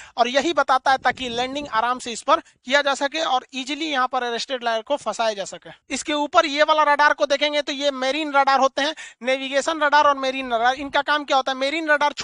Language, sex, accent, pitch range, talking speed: Hindi, male, native, 245-285 Hz, 85 wpm